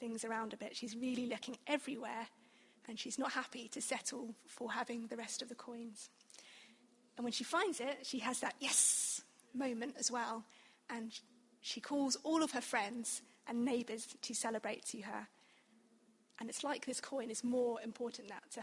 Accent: British